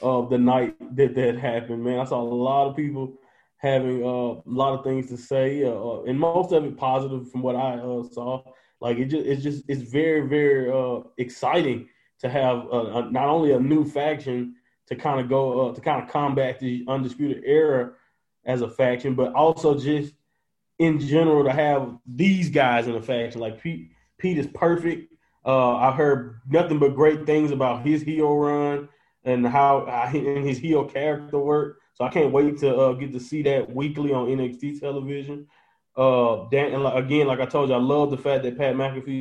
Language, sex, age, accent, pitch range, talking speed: English, male, 20-39, American, 125-145 Hz, 200 wpm